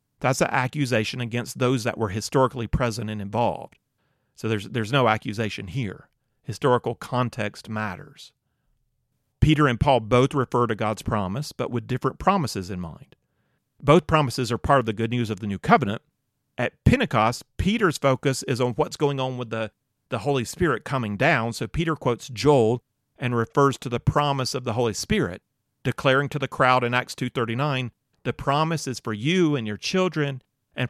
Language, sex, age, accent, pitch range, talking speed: English, male, 40-59, American, 110-135 Hz, 175 wpm